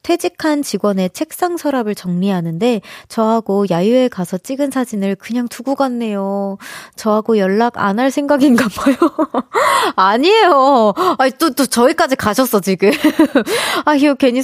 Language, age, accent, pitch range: Korean, 20-39, native, 205-295 Hz